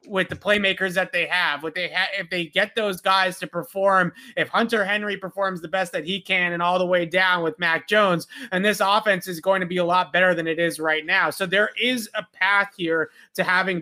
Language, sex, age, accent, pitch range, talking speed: English, male, 30-49, American, 175-200 Hz, 245 wpm